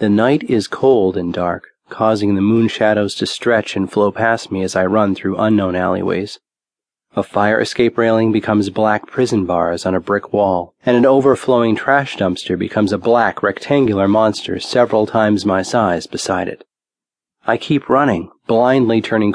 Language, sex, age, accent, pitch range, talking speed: English, male, 30-49, American, 95-115 Hz, 170 wpm